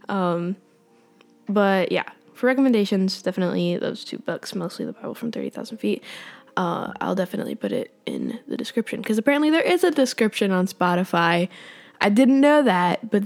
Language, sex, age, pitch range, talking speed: English, female, 10-29, 185-245 Hz, 165 wpm